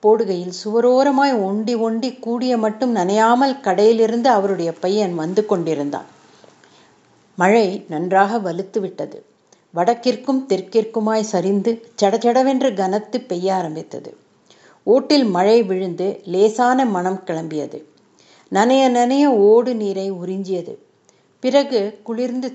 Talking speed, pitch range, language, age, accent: 60 wpm, 195-255 Hz, Tamil, 50-69, native